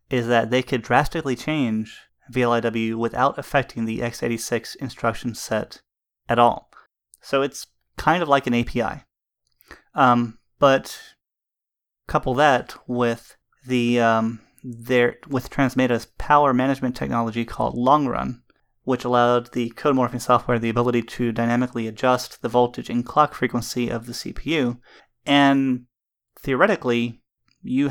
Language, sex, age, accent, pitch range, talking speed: English, male, 30-49, American, 120-135 Hz, 130 wpm